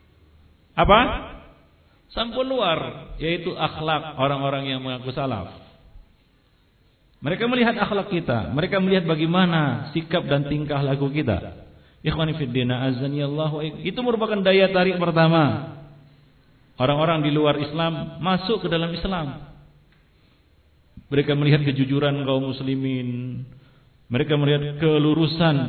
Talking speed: 100 wpm